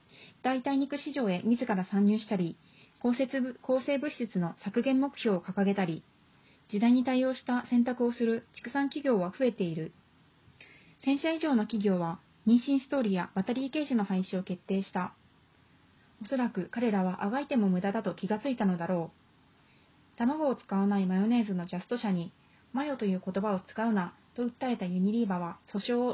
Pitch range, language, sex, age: 190-250 Hz, Japanese, female, 30-49